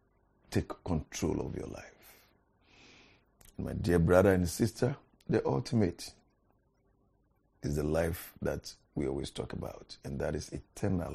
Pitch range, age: 90-115 Hz, 50-69